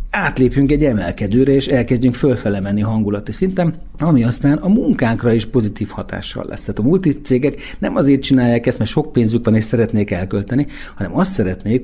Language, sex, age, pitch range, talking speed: Hungarian, male, 60-79, 100-140 Hz, 170 wpm